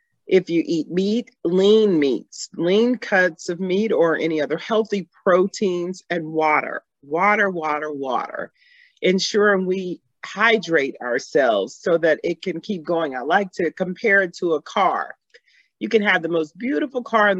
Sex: female